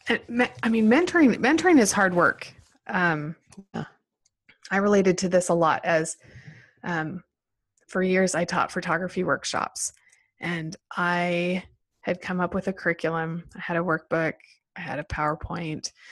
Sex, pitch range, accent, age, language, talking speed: female, 160-195 Hz, American, 20-39, English, 140 wpm